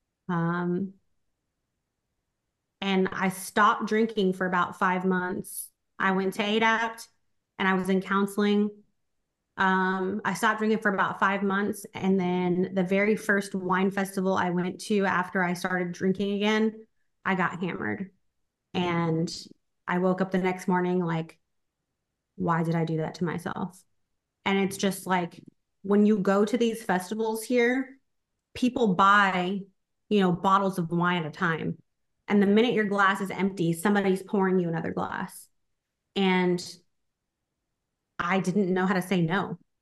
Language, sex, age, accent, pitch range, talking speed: English, female, 20-39, American, 185-215 Hz, 150 wpm